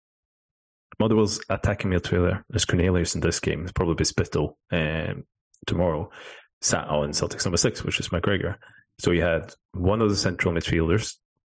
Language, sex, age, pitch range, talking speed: English, male, 30-49, 85-105 Hz, 155 wpm